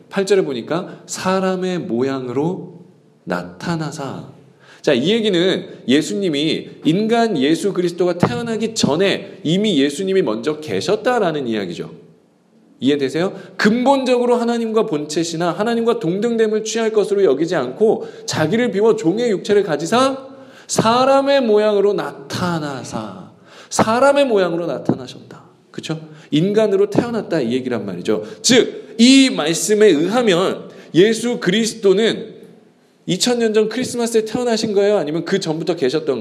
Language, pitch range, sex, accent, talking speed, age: English, 170-240 Hz, male, Korean, 100 wpm, 40-59